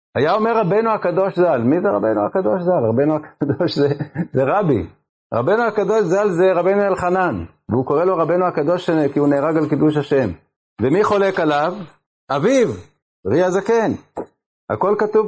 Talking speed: 160 wpm